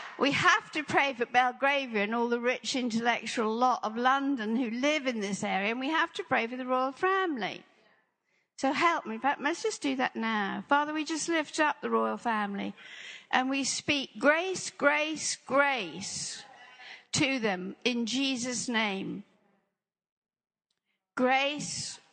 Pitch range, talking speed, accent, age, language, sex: 225-290 Hz, 150 wpm, British, 60-79, English, female